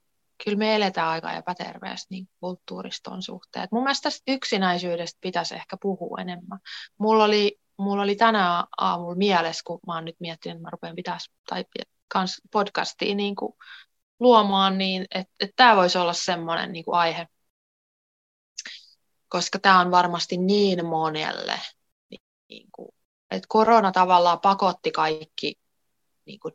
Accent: native